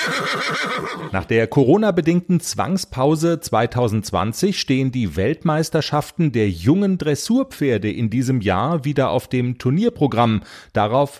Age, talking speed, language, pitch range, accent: 40-59, 100 wpm, German, 110-155 Hz, German